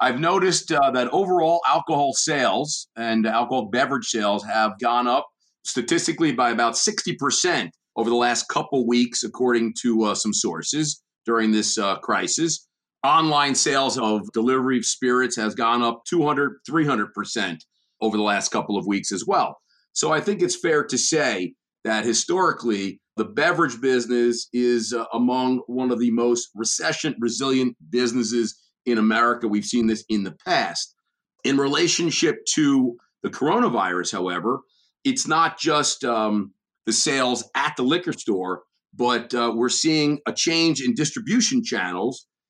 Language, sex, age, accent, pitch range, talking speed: English, male, 40-59, American, 115-160 Hz, 150 wpm